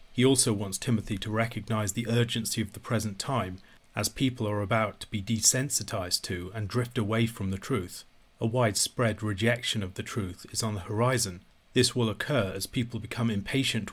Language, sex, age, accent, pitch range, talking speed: English, male, 40-59, British, 100-120 Hz, 185 wpm